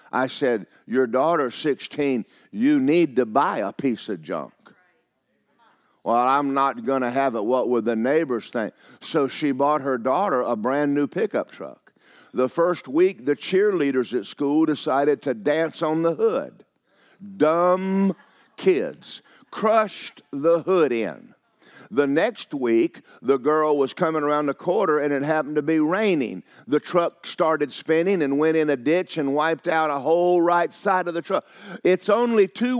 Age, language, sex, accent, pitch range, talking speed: 50-69, English, male, American, 150-200 Hz, 170 wpm